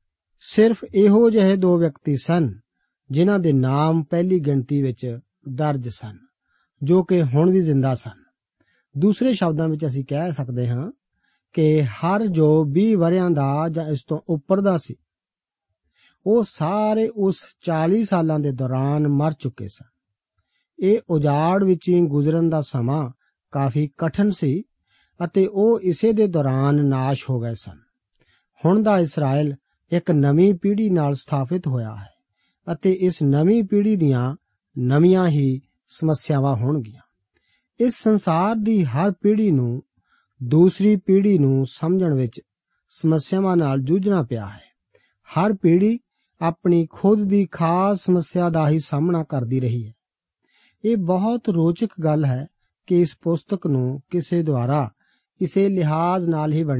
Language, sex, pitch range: Punjabi, male, 135-185 Hz